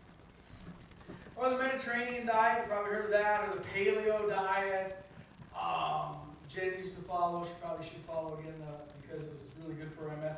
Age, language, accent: 40-59, English, American